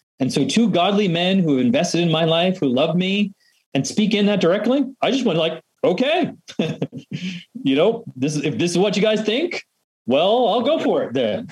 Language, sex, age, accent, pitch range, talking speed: English, male, 40-59, American, 140-205 Hz, 210 wpm